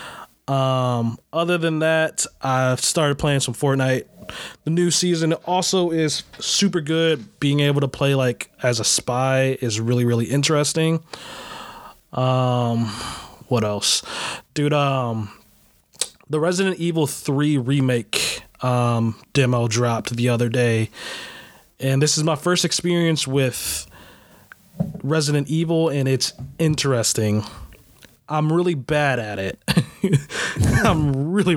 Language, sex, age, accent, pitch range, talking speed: English, male, 20-39, American, 125-160 Hz, 120 wpm